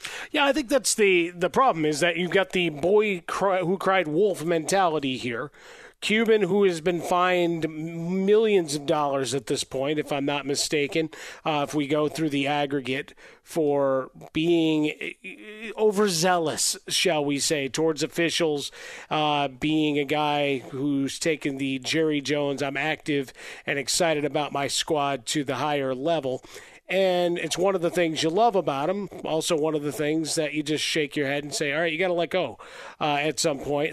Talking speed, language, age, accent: 180 wpm, English, 40-59, American